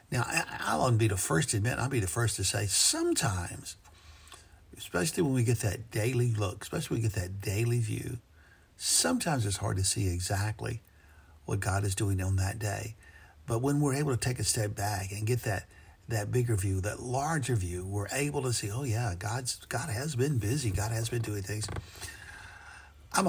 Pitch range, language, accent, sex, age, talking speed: 95-120 Hz, English, American, male, 60-79, 200 wpm